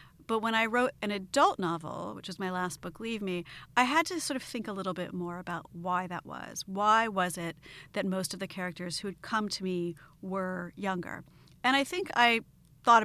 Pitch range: 175-225 Hz